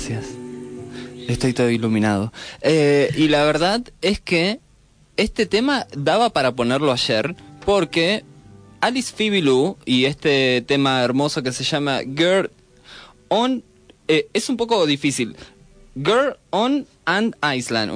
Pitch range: 125-165 Hz